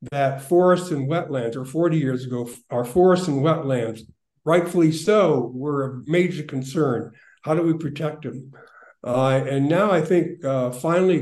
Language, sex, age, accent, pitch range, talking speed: English, male, 60-79, American, 135-175 Hz, 160 wpm